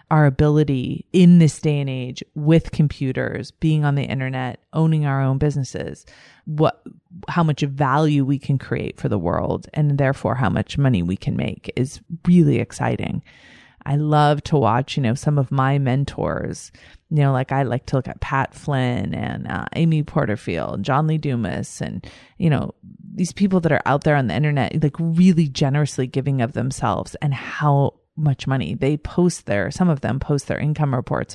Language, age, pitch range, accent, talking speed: English, 30-49, 130-155 Hz, American, 185 wpm